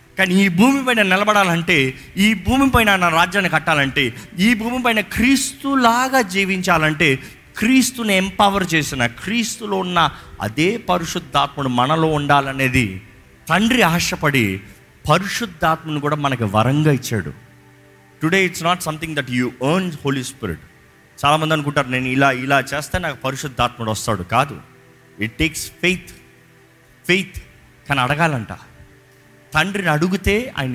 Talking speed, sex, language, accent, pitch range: 110 wpm, male, Telugu, native, 130-195 Hz